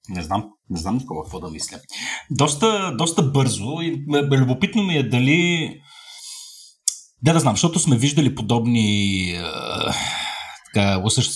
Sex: male